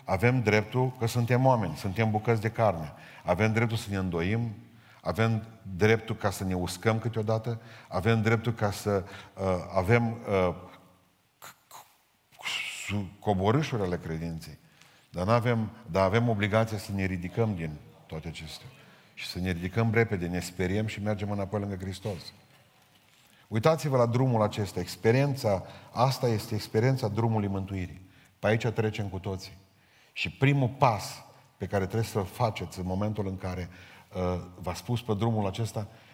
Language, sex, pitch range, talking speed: Romanian, male, 95-115 Hz, 145 wpm